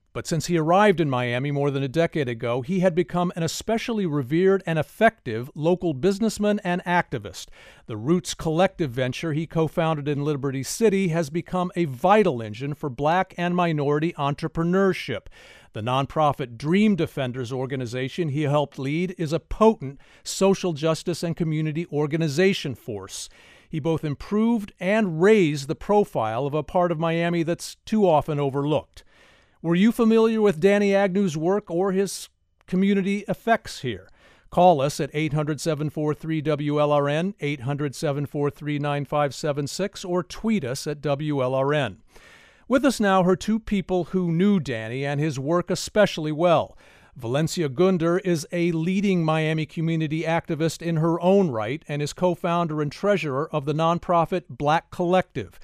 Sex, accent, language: male, American, English